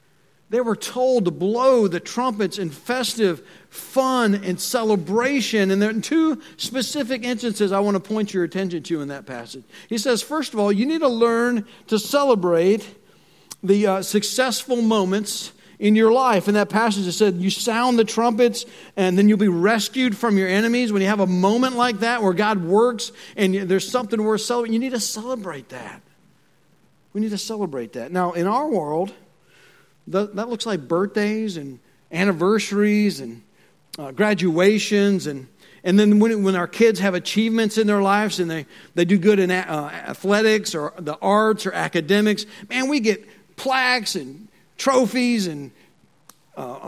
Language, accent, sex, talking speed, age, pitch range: English, American, male, 175 wpm, 50-69, 190-240 Hz